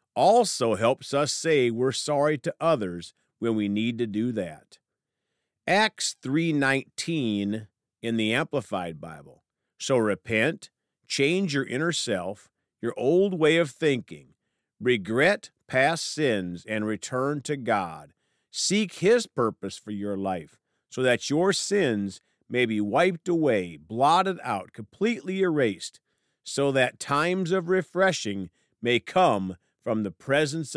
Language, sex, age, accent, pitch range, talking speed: English, male, 50-69, American, 100-155 Hz, 130 wpm